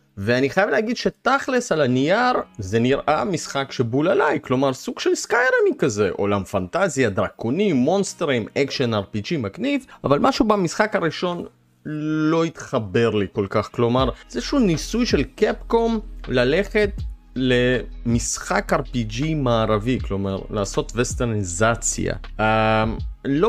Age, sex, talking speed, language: 30-49, male, 120 wpm, Hebrew